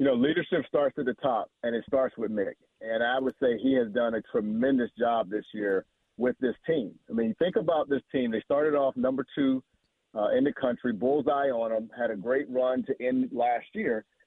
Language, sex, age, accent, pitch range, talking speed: English, male, 40-59, American, 125-170 Hz, 225 wpm